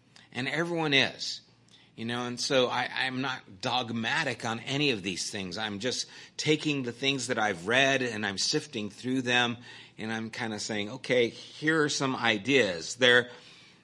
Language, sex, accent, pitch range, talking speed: English, male, American, 110-135 Hz, 170 wpm